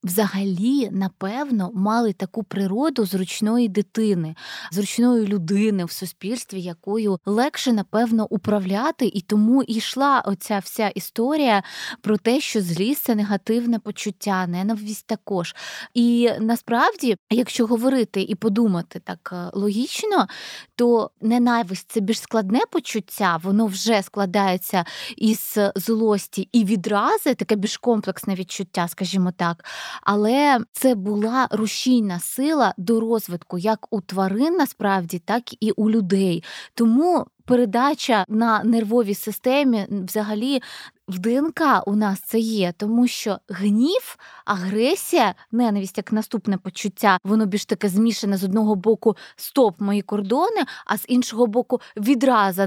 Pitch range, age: 195-235 Hz, 20-39